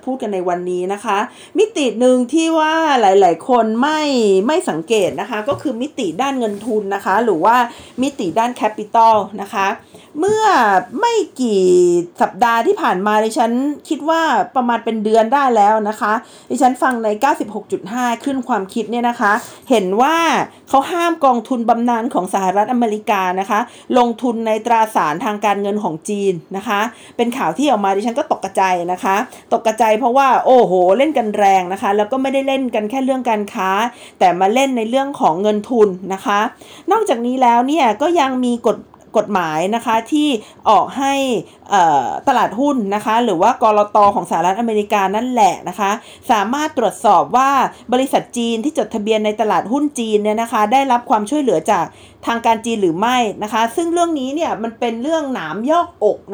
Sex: female